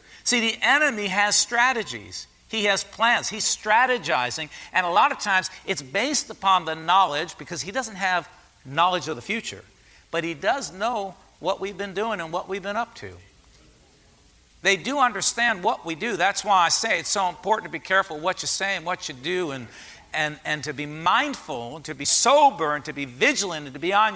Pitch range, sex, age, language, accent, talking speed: 170-230 Hz, male, 50-69, English, American, 205 wpm